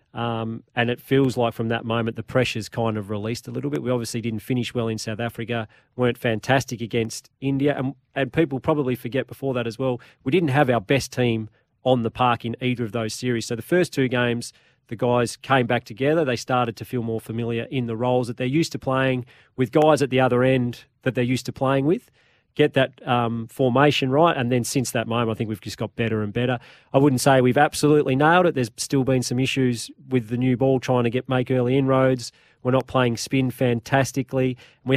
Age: 40-59